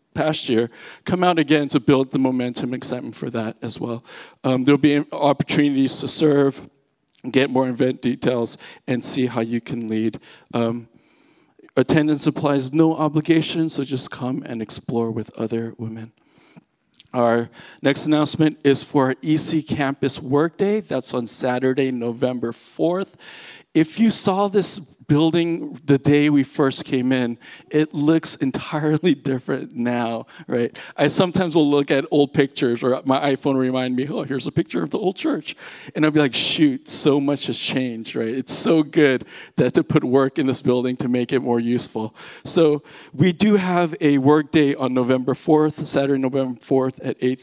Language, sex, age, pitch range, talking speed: English, male, 40-59, 125-155 Hz, 170 wpm